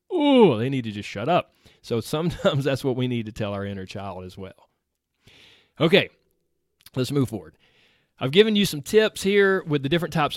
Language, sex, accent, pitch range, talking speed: English, male, American, 115-170 Hz, 195 wpm